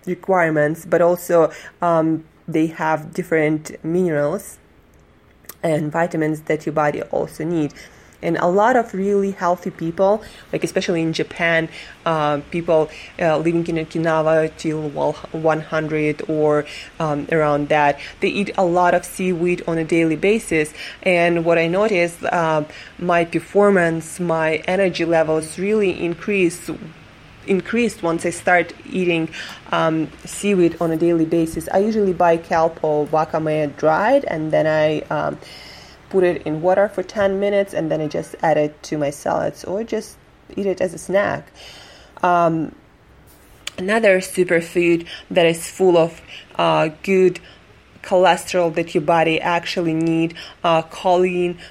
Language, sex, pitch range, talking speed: English, female, 160-180 Hz, 140 wpm